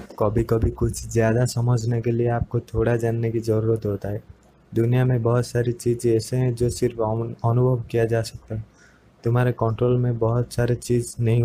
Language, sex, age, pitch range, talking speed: Hindi, male, 20-39, 110-120 Hz, 185 wpm